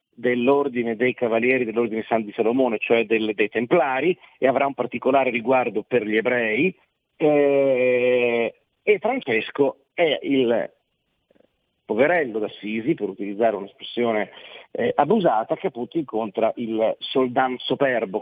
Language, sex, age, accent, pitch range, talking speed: Italian, male, 40-59, native, 115-150 Hz, 120 wpm